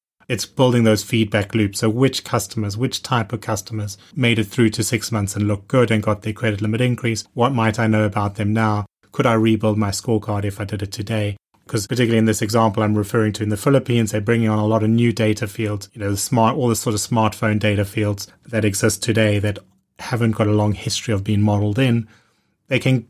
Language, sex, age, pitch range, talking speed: English, male, 30-49, 105-120 Hz, 235 wpm